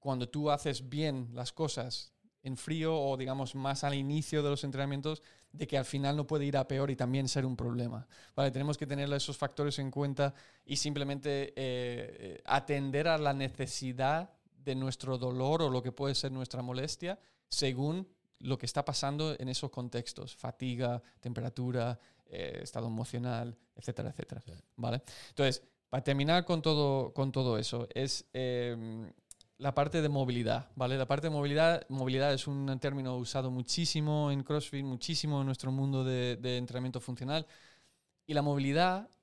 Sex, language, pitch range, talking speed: male, Spanish, 125-150 Hz, 165 wpm